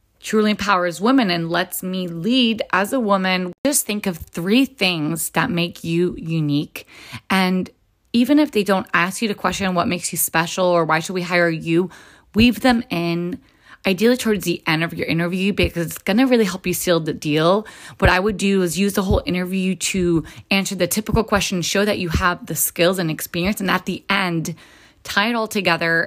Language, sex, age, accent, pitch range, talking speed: English, female, 20-39, American, 170-200 Hz, 200 wpm